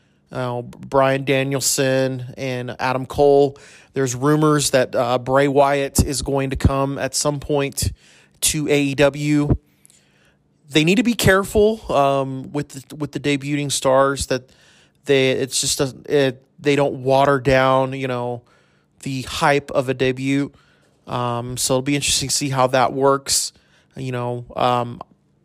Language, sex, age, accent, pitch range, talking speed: English, male, 30-49, American, 130-140 Hz, 145 wpm